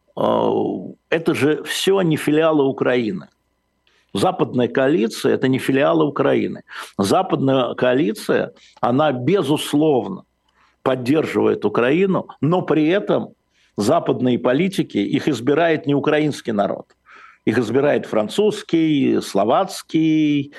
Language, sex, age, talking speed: Russian, male, 60-79, 95 wpm